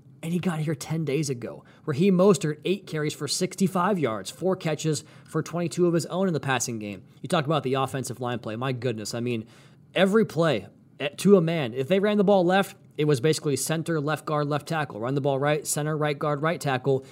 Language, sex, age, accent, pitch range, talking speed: English, male, 30-49, American, 135-165 Hz, 230 wpm